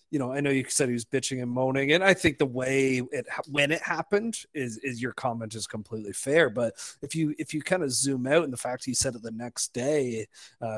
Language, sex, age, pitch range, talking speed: English, male, 30-49, 120-150 Hz, 255 wpm